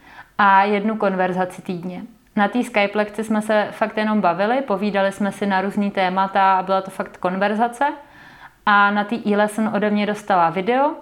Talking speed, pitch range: 180 wpm, 190-215 Hz